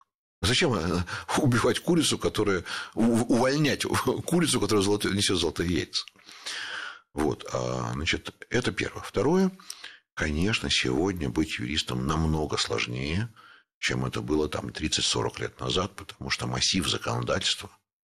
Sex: male